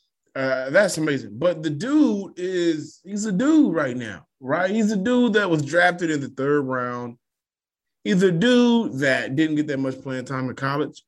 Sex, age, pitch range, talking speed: male, 20-39, 125-160 Hz, 190 wpm